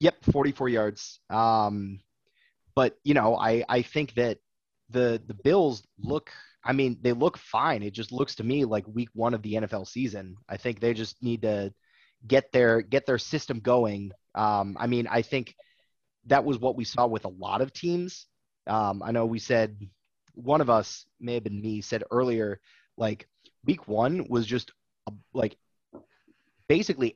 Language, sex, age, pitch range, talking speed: English, male, 30-49, 105-125 Hz, 180 wpm